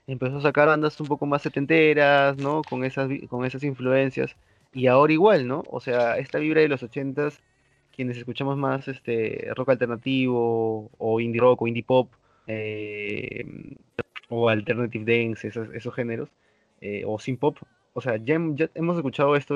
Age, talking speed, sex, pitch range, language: 20-39, 170 wpm, male, 110-140 Hz, Spanish